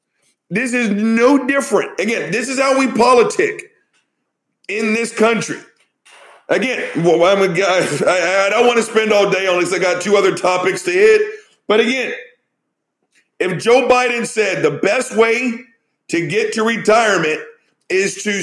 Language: English